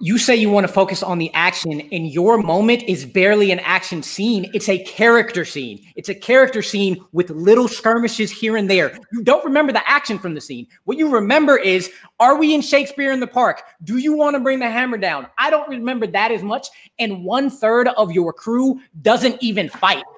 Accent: American